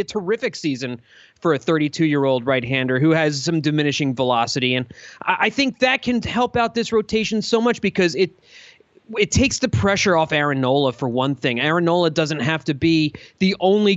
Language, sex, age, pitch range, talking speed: English, male, 30-49, 155-210 Hz, 200 wpm